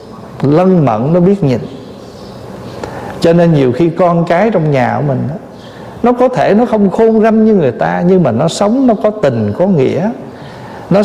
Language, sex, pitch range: Vietnamese, male, 145-210 Hz